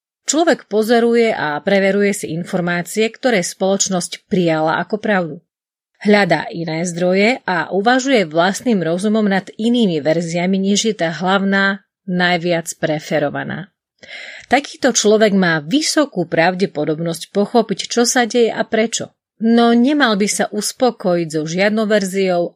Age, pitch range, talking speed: 30-49, 175-230 Hz, 120 wpm